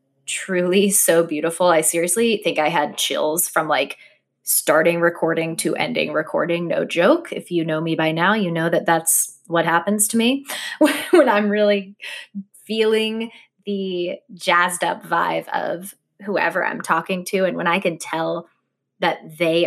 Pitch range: 165-200 Hz